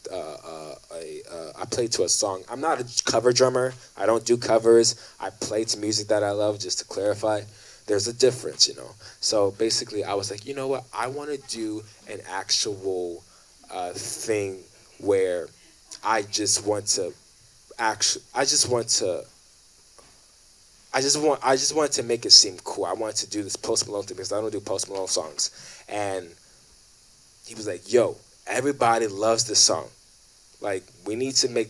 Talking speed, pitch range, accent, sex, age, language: 185 wpm, 105-130 Hz, American, male, 20-39, English